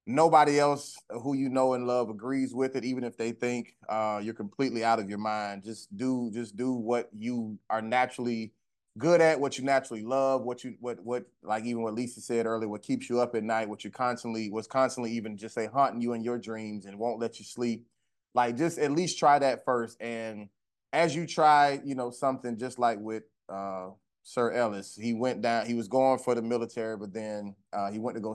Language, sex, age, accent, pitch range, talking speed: English, male, 20-39, American, 110-130 Hz, 220 wpm